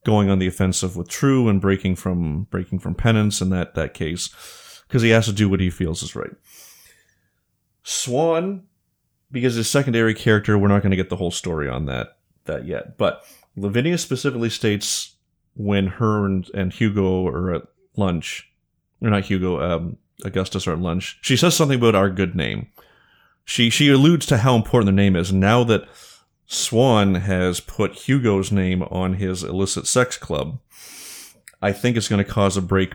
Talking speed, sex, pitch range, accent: 180 wpm, male, 95-115 Hz, American